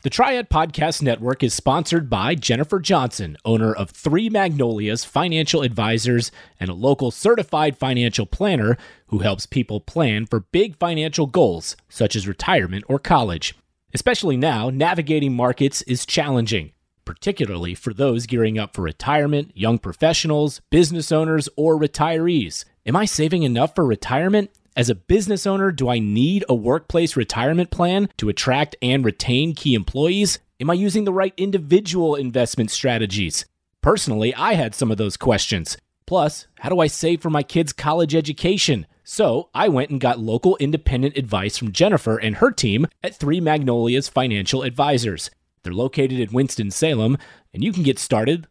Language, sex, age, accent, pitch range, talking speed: English, male, 30-49, American, 115-165 Hz, 160 wpm